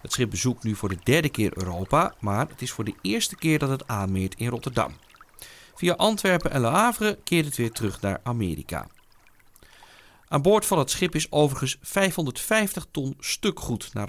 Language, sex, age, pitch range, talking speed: Dutch, male, 40-59, 105-155 Hz, 185 wpm